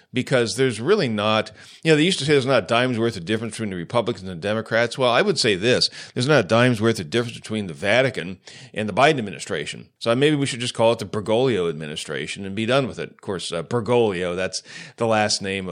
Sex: male